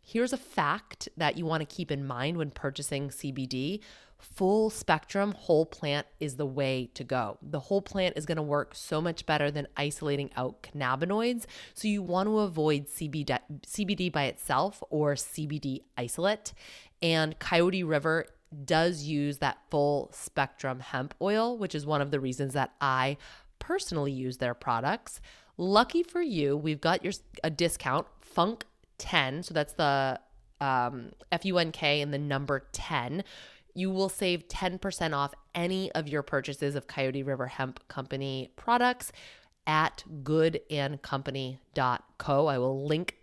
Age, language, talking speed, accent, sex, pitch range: 30-49, English, 150 wpm, American, female, 140-170 Hz